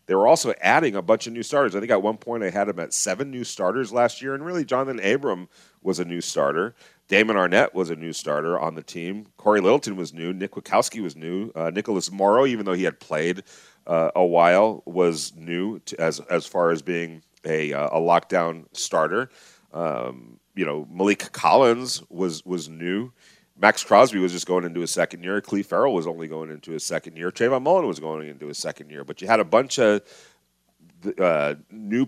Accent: American